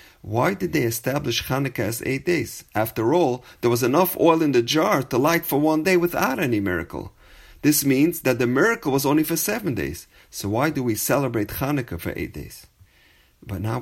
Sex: male